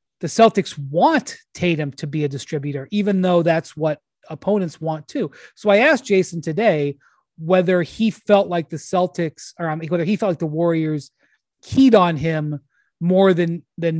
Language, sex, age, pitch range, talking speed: English, male, 30-49, 155-190 Hz, 170 wpm